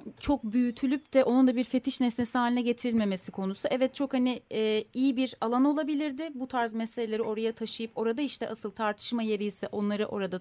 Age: 30-49